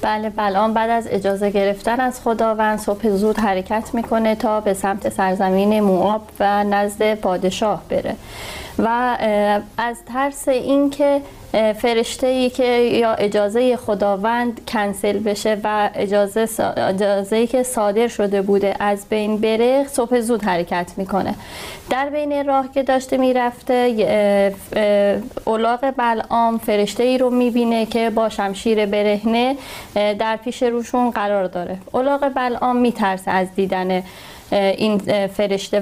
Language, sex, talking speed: Persian, female, 130 wpm